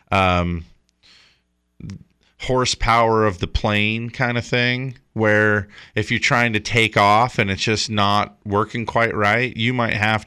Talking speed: 145 wpm